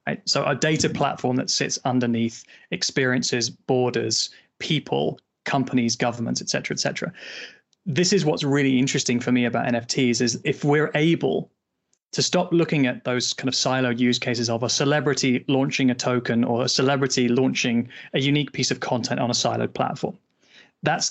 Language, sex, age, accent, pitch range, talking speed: English, male, 20-39, British, 125-145 Hz, 170 wpm